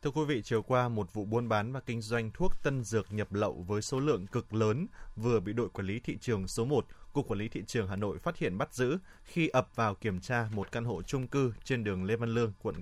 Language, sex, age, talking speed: Vietnamese, male, 20-39, 270 wpm